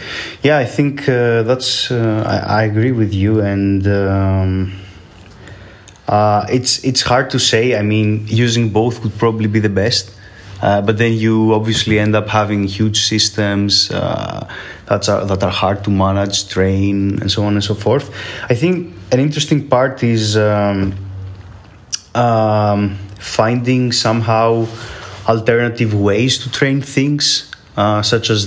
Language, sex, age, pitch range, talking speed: English, male, 20-39, 100-115 Hz, 150 wpm